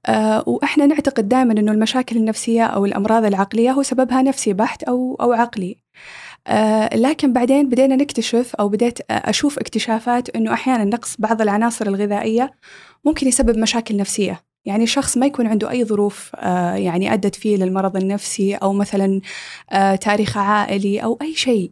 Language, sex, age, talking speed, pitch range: Arabic, female, 20-39, 155 wpm, 200-250 Hz